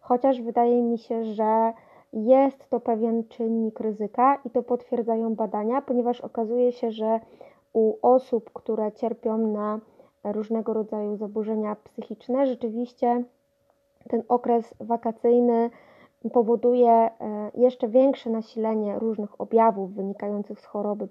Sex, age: female, 20-39